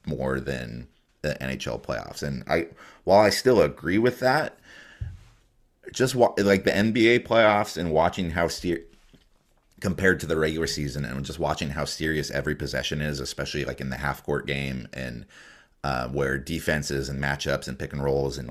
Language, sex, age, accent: English, male, 30-49, American